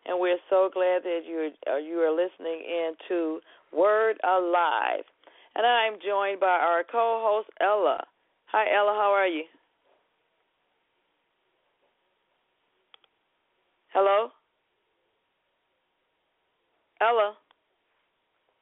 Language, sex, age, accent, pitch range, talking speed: English, female, 40-59, American, 160-195 Hz, 90 wpm